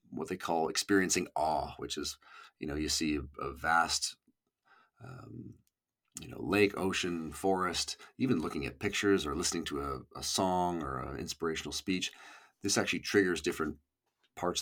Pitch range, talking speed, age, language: 80-100 Hz, 155 wpm, 40-59, English